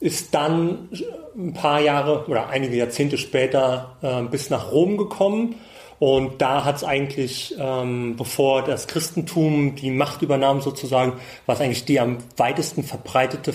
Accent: German